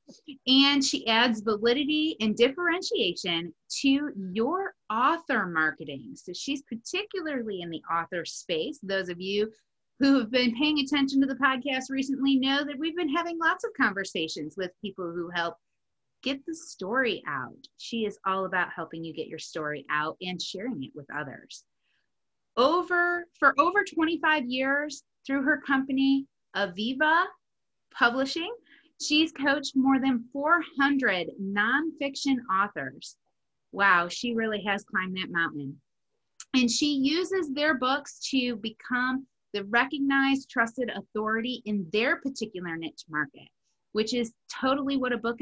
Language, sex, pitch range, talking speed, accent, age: English, female, 195-290 Hz, 140 wpm, American, 30-49